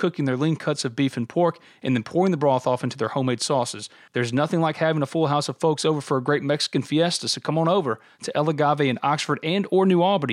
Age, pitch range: 40-59, 125-160 Hz